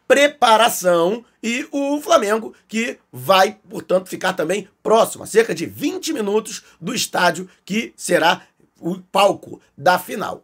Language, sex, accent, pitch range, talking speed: Portuguese, male, Brazilian, 160-225 Hz, 130 wpm